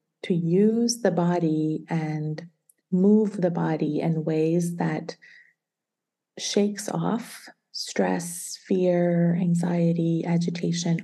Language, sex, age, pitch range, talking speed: English, female, 30-49, 170-220 Hz, 90 wpm